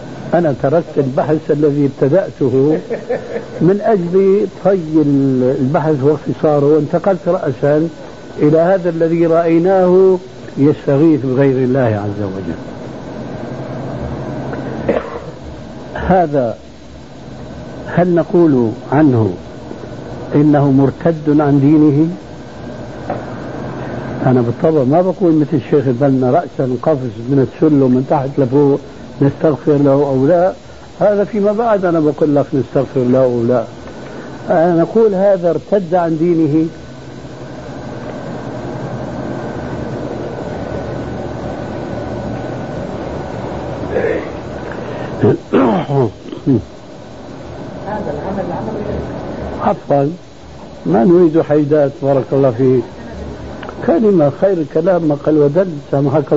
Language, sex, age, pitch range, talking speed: Arabic, male, 70-89, 135-170 Hz, 80 wpm